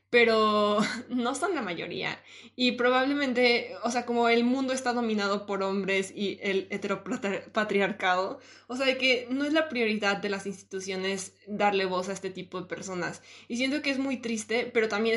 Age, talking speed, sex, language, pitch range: 20-39, 180 wpm, female, Spanish, 195-245 Hz